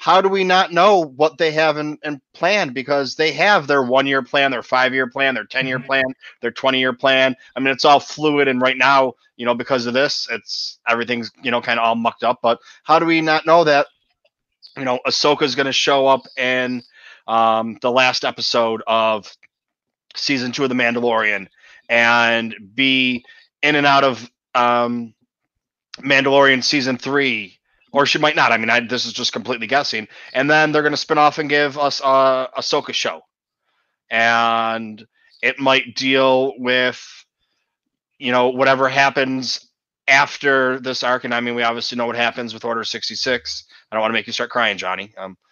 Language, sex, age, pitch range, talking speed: English, male, 30-49, 115-135 Hz, 190 wpm